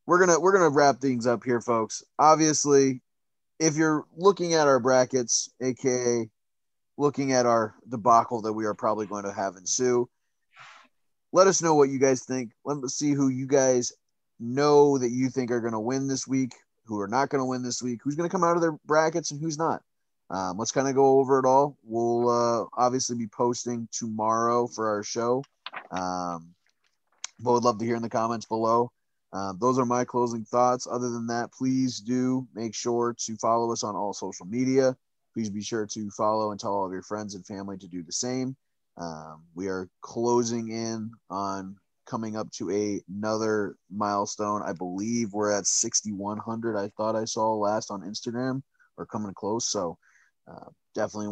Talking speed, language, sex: 195 wpm, English, male